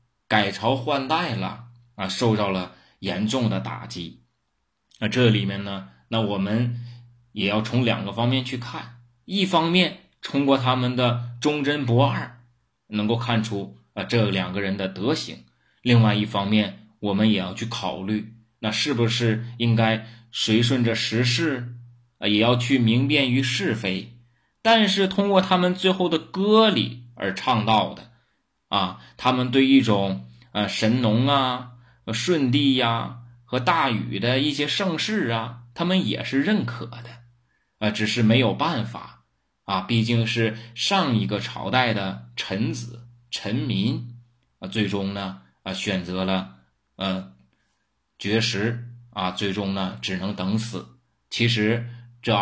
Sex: male